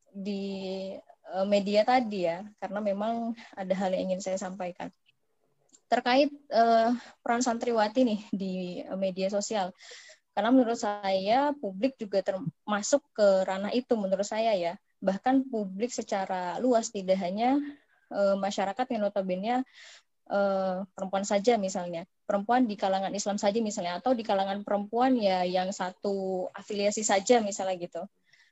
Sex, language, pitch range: female, Indonesian, 195-245 Hz